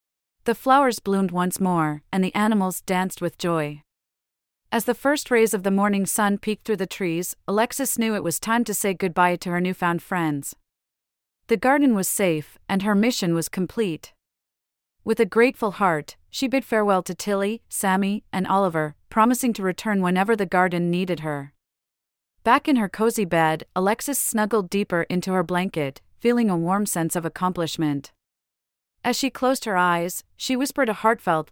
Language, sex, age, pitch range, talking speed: English, female, 40-59, 165-220 Hz, 170 wpm